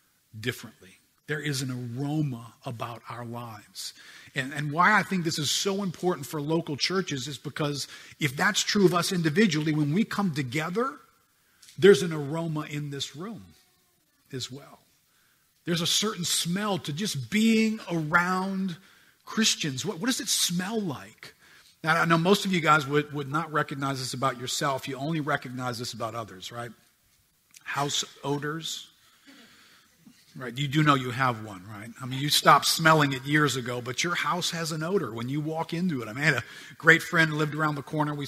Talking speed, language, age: 185 wpm, English, 50-69